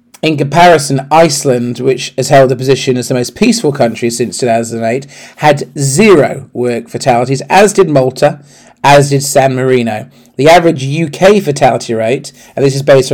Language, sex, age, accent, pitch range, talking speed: English, male, 40-59, British, 125-145 Hz, 160 wpm